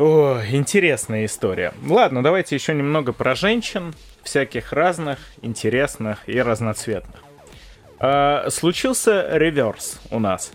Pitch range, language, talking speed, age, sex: 115-145 Hz, Russian, 110 wpm, 20-39, male